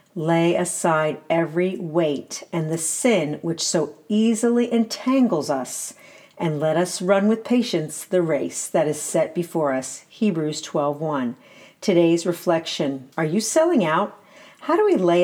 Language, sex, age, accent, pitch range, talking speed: English, female, 40-59, American, 160-210 Hz, 145 wpm